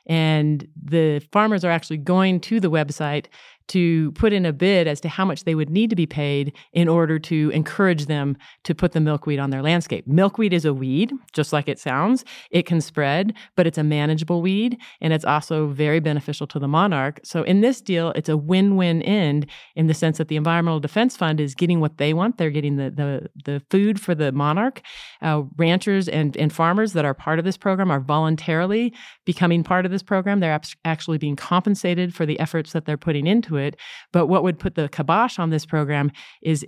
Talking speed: 210 wpm